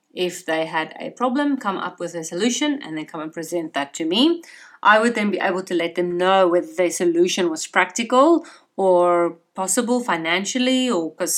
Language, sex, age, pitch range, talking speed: English, female, 30-49, 175-235 Hz, 195 wpm